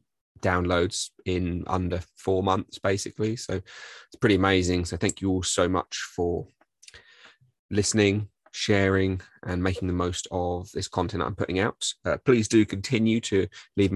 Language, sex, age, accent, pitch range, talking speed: English, male, 20-39, British, 90-105 Hz, 150 wpm